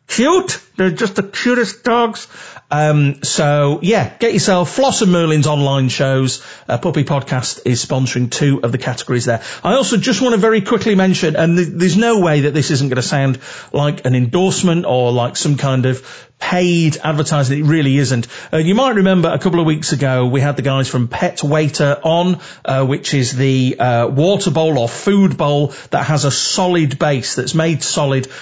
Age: 40-59